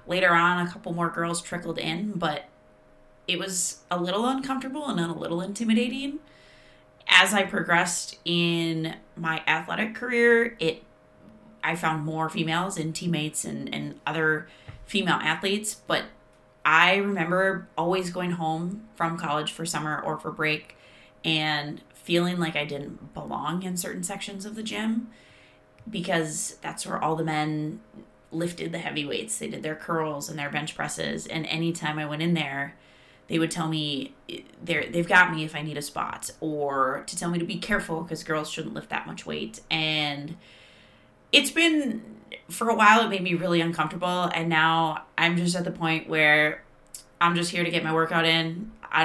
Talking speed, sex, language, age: 175 wpm, female, English, 20-39